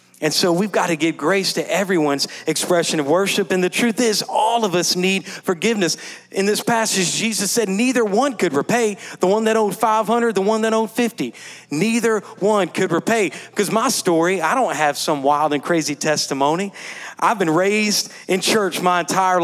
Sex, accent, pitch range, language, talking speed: male, American, 155-210 Hz, English, 190 wpm